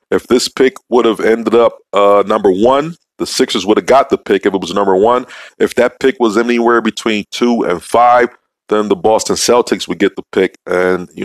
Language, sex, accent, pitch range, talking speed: English, male, American, 95-120 Hz, 220 wpm